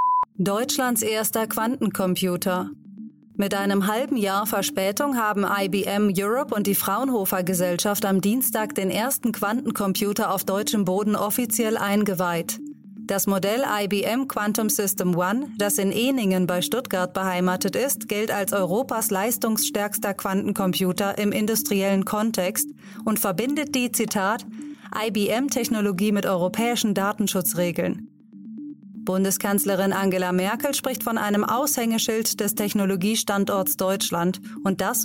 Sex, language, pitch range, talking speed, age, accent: female, German, 195-225 Hz, 110 wpm, 30-49, German